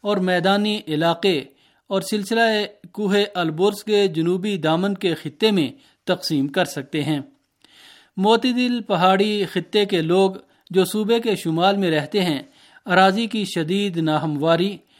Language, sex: Urdu, male